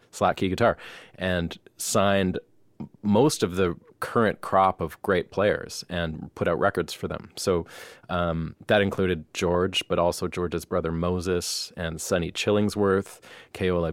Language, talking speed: English, 140 wpm